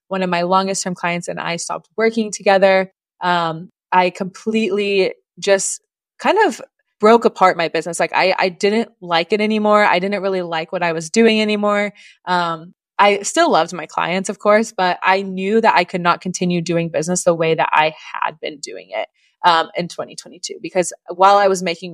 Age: 20-39